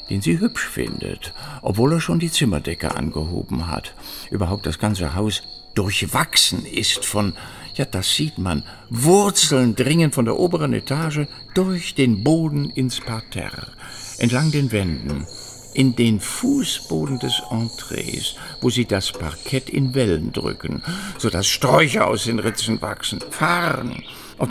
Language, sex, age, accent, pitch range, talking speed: German, male, 60-79, German, 105-150 Hz, 140 wpm